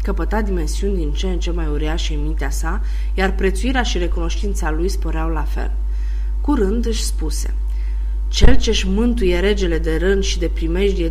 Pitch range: 155-210 Hz